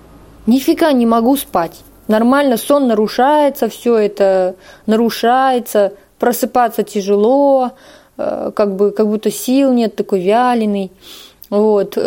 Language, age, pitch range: Russian, 20-39, 200-255 Hz